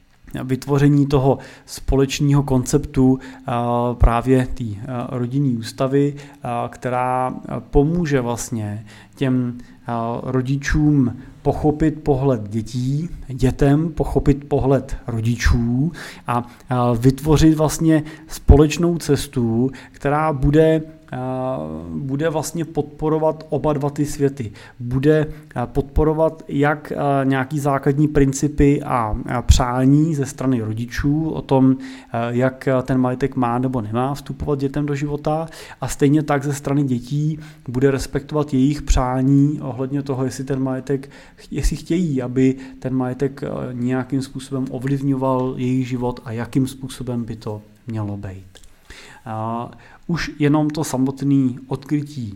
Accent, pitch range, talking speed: native, 120-145 Hz, 110 wpm